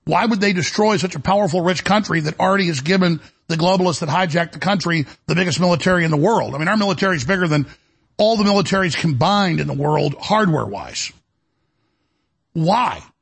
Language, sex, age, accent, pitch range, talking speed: English, male, 50-69, American, 170-215 Hz, 185 wpm